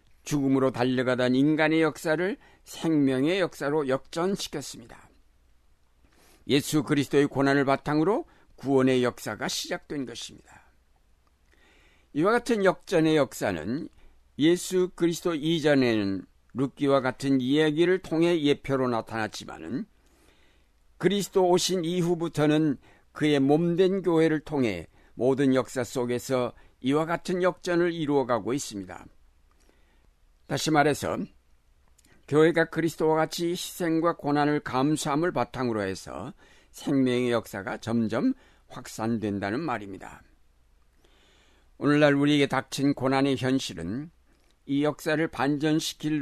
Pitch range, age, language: 105-155 Hz, 60-79, Korean